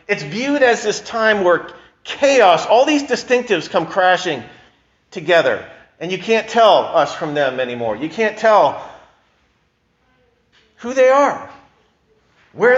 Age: 40-59